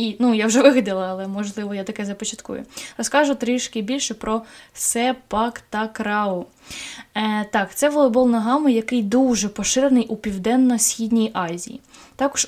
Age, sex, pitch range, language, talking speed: 20-39, female, 200-245 Hz, Ukrainian, 140 wpm